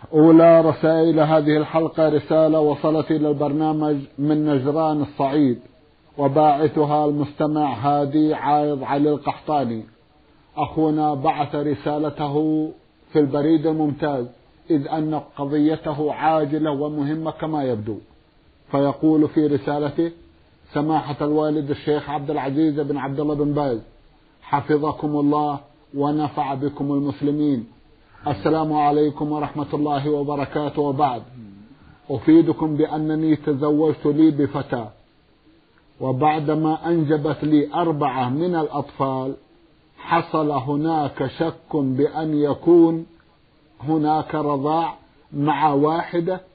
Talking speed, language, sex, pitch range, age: 95 wpm, Arabic, male, 145-155 Hz, 50-69